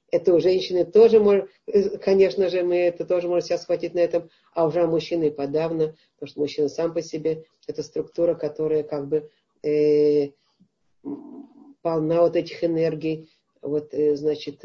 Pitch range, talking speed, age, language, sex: 150-190 Hz, 160 wpm, 50-69, Russian, female